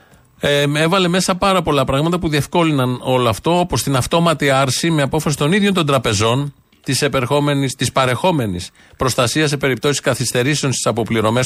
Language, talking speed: Greek, 140 wpm